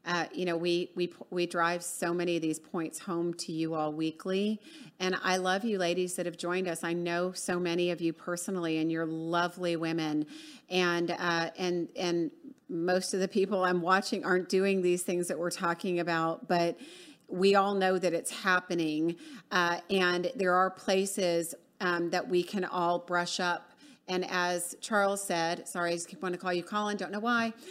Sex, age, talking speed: female, 40-59, 195 wpm